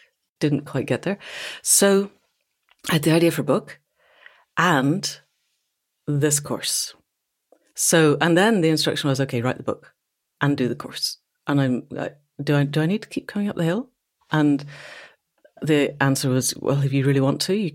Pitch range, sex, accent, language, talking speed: 135-170 Hz, female, British, English, 180 wpm